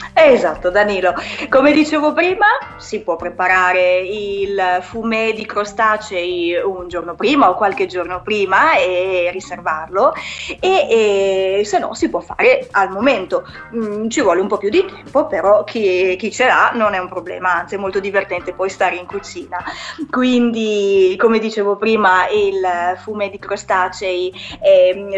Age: 30-49